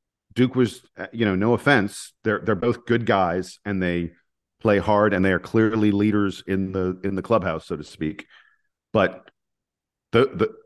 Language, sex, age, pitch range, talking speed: English, male, 40-59, 95-115 Hz, 175 wpm